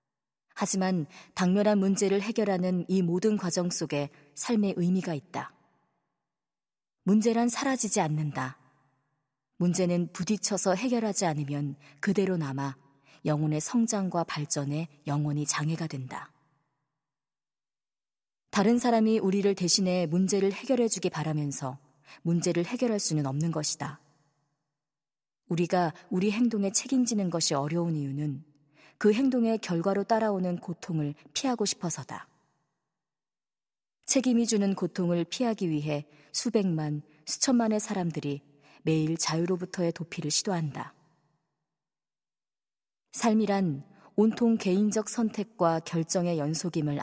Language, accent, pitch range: Korean, native, 145-195 Hz